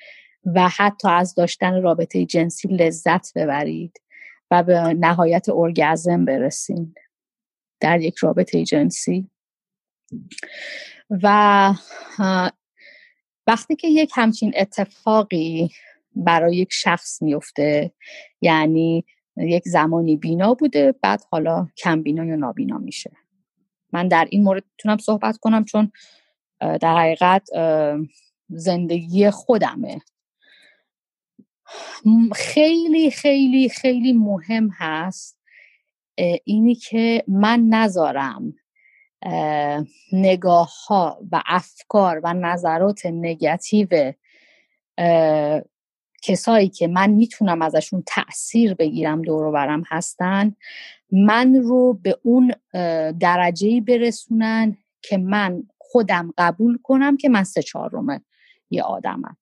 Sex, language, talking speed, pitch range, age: female, Persian, 95 wpm, 165-225 Hz, 30-49